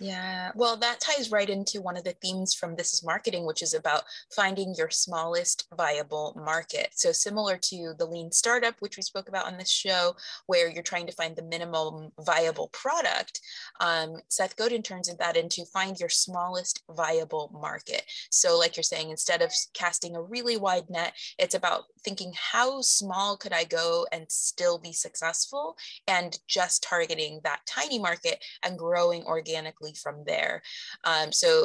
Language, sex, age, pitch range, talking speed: English, female, 20-39, 165-210 Hz, 175 wpm